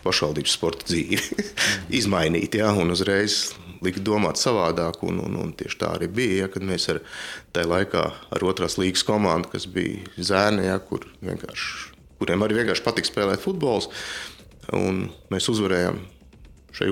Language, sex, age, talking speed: English, male, 30-49, 150 wpm